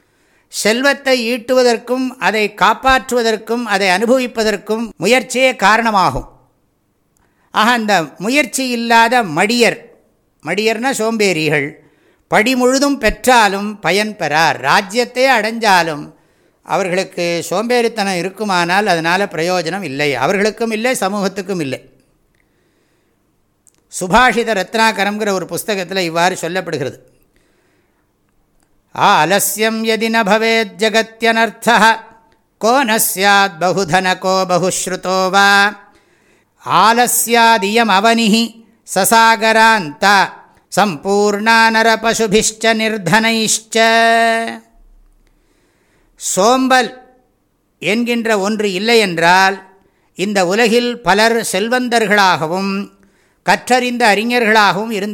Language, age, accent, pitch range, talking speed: English, 60-79, Indian, 190-230 Hz, 60 wpm